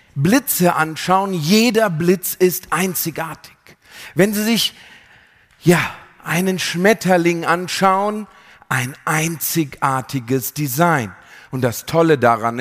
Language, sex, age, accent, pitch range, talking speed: German, male, 40-59, German, 140-190 Hz, 95 wpm